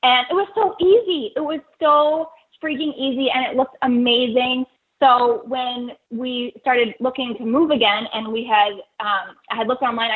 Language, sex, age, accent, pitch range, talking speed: English, female, 10-29, American, 225-295 Hz, 175 wpm